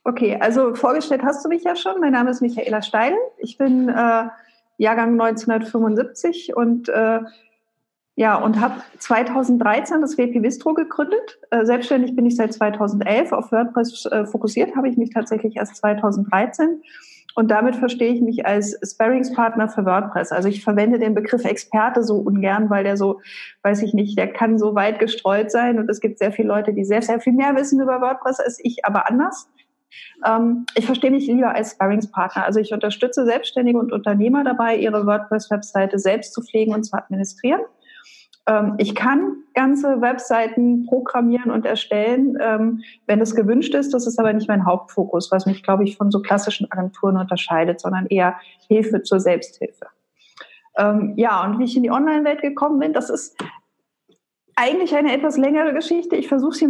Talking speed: 170 wpm